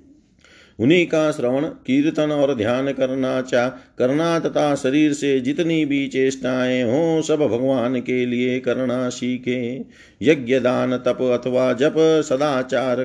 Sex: male